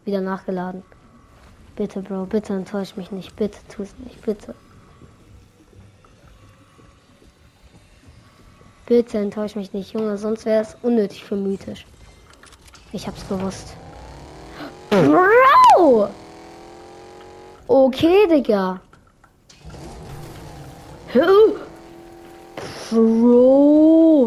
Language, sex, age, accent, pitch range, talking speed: German, female, 20-39, German, 170-240 Hz, 75 wpm